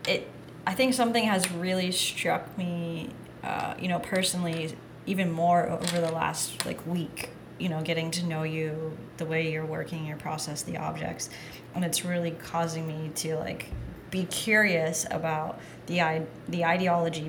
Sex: female